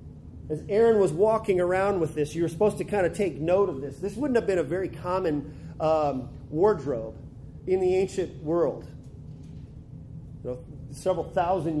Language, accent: English, American